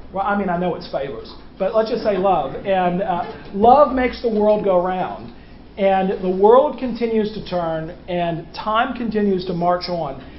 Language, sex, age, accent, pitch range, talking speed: English, male, 40-59, American, 170-215 Hz, 185 wpm